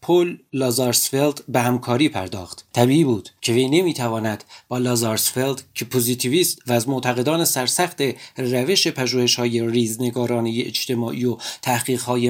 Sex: male